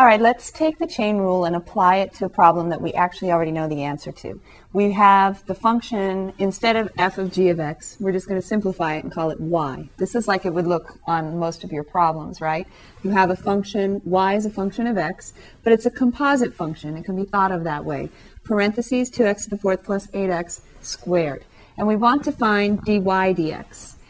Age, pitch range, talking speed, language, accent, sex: 30-49, 170-220 Hz, 225 wpm, English, American, female